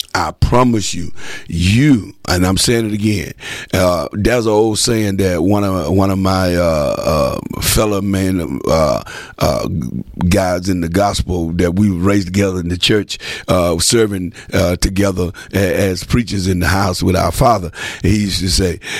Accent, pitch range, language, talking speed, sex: American, 95-110 Hz, English, 170 wpm, male